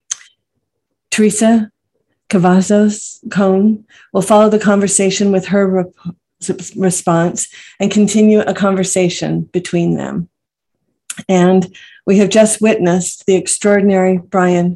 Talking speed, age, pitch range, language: 100 wpm, 50-69, 180-205 Hz, English